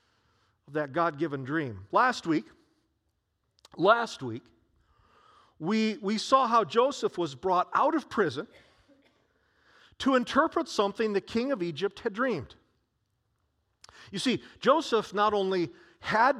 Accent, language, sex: American, English, male